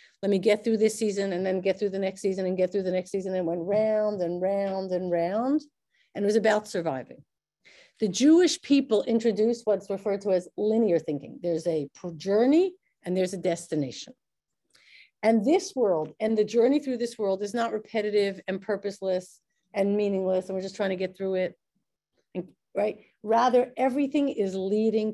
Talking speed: 185 wpm